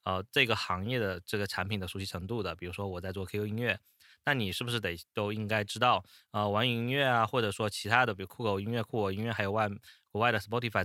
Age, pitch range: 20-39, 100-125 Hz